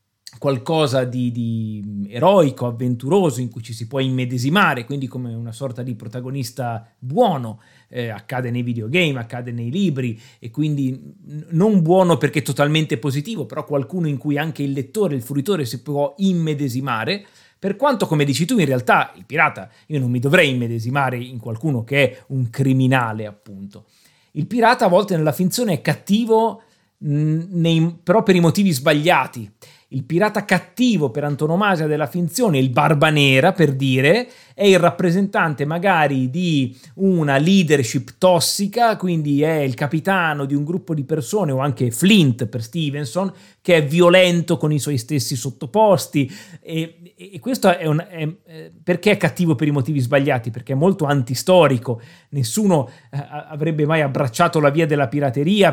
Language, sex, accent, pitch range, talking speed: Italian, male, native, 130-170 Hz, 160 wpm